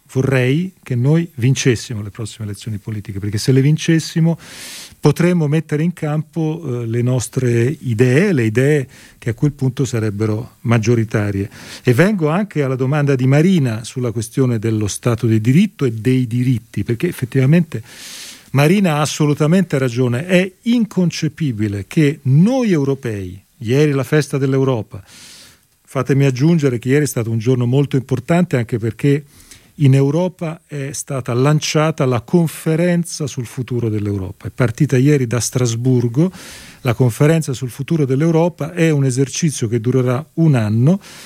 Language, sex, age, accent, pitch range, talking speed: Italian, male, 40-59, native, 120-160 Hz, 140 wpm